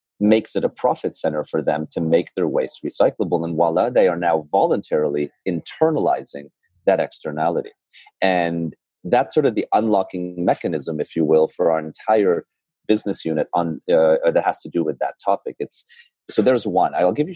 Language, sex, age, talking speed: English, male, 30-49, 180 wpm